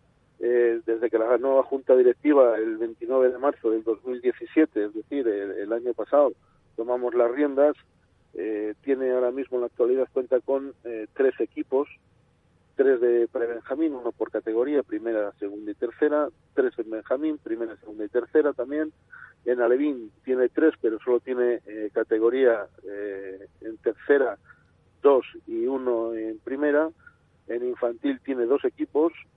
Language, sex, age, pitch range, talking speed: Spanish, male, 40-59, 115-145 Hz, 145 wpm